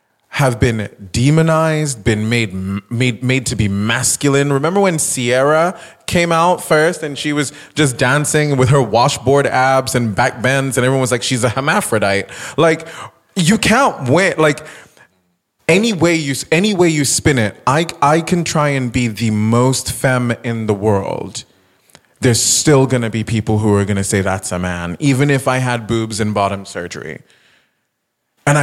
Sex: male